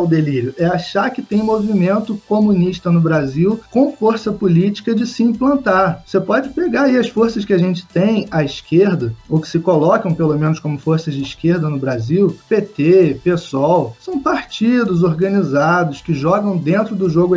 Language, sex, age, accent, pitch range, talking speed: Portuguese, male, 20-39, Brazilian, 170-215 Hz, 175 wpm